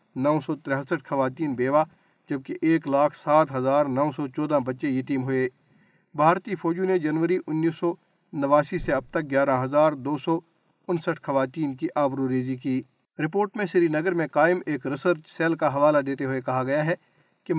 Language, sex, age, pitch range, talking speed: Urdu, male, 50-69, 135-165 Hz, 180 wpm